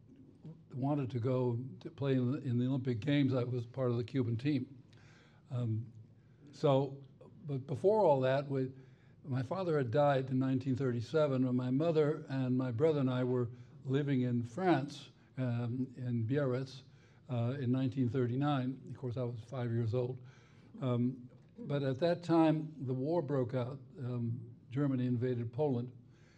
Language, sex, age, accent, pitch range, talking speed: English, male, 60-79, American, 125-145 Hz, 155 wpm